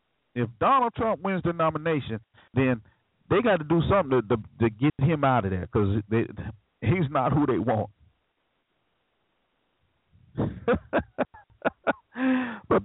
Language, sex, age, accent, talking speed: English, male, 50-69, American, 135 wpm